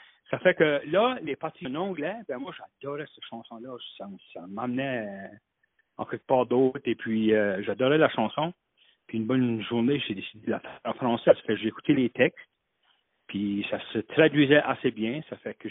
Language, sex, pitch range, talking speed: French, male, 115-145 Hz, 195 wpm